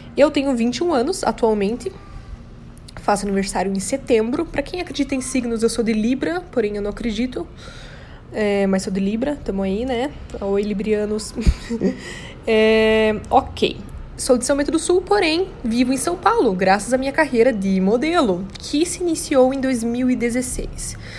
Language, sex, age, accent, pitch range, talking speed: Portuguese, female, 20-39, Brazilian, 215-275 Hz, 160 wpm